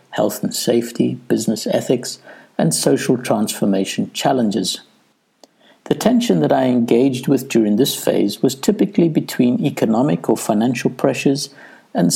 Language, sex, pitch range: English, male, 110-140 Hz